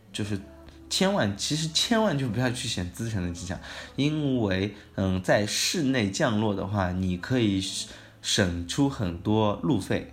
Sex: male